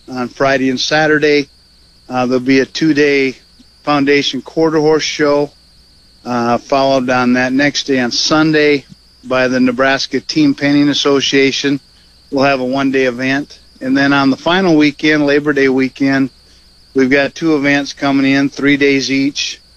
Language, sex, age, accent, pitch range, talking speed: English, male, 50-69, American, 125-145 Hz, 150 wpm